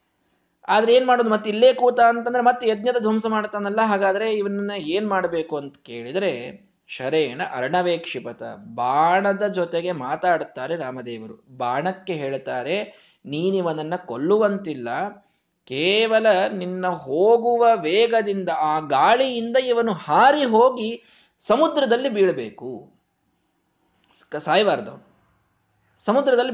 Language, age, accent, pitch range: Kannada, 20-39, native, 155-220 Hz